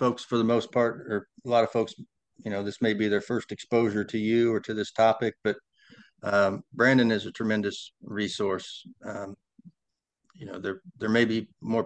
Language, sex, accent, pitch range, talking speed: English, male, American, 100-115 Hz, 195 wpm